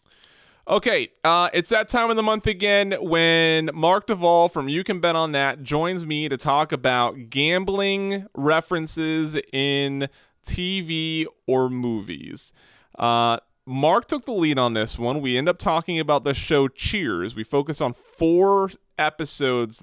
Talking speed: 150 wpm